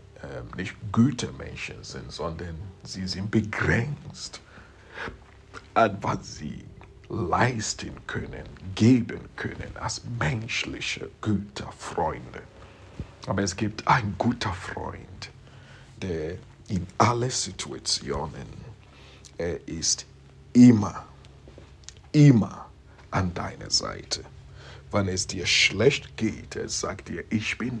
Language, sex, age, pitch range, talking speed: English, male, 60-79, 95-115 Hz, 95 wpm